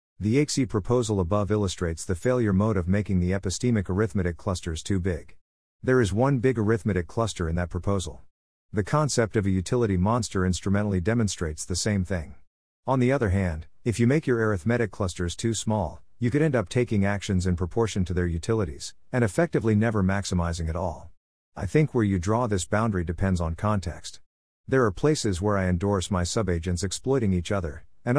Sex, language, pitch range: male, English, 90-115 Hz